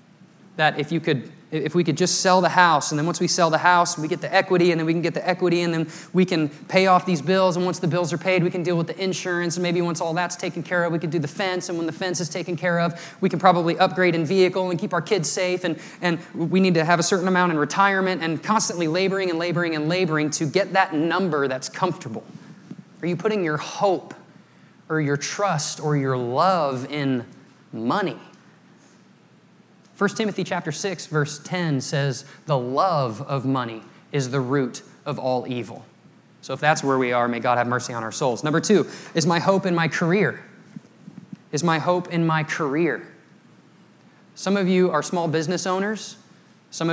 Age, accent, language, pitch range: 20-39, American, English, 150-185 Hz